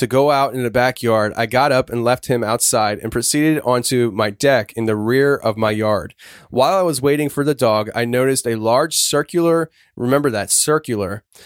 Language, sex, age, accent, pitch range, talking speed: English, male, 20-39, American, 115-145 Hz, 205 wpm